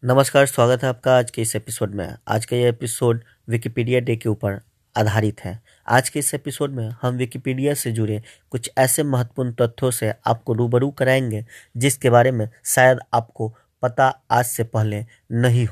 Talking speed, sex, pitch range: 175 wpm, male, 115-145 Hz